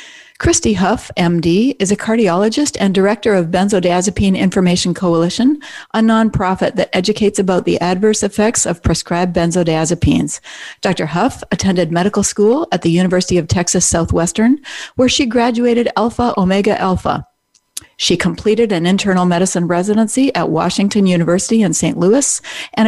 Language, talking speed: English, 140 wpm